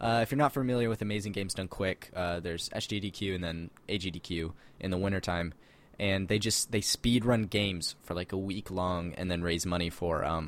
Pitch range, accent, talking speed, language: 85-105 Hz, American, 220 wpm, English